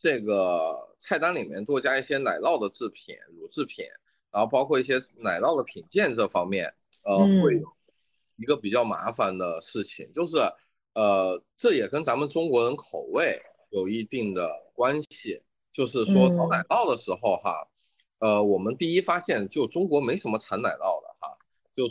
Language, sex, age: Chinese, male, 20-39